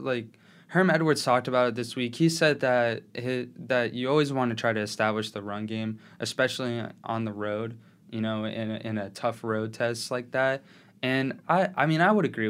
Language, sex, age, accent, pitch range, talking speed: English, male, 20-39, American, 115-150 Hz, 215 wpm